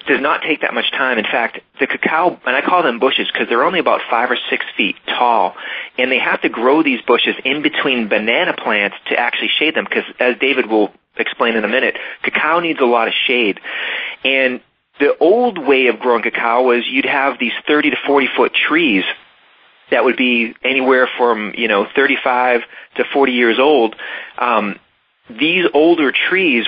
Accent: American